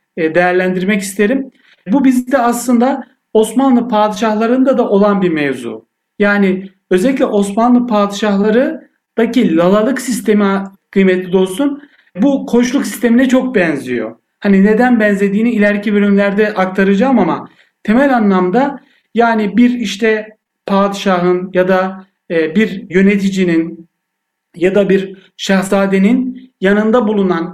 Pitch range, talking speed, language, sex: 180-220 Hz, 100 wpm, Turkish, male